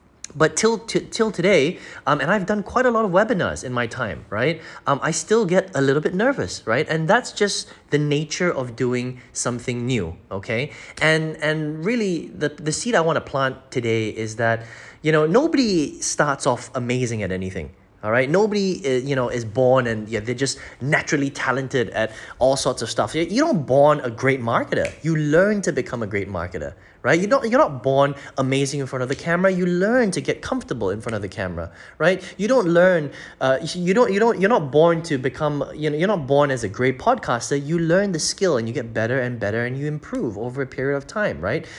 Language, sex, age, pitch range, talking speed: English, male, 20-39, 120-170 Hz, 215 wpm